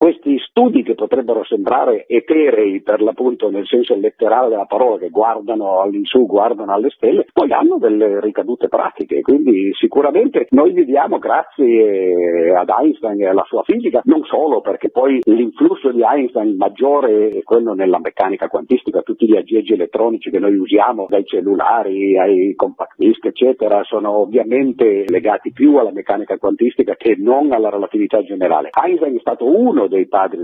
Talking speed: 160 wpm